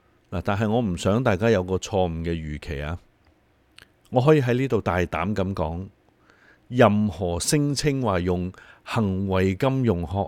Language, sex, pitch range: Chinese, male, 90-120 Hz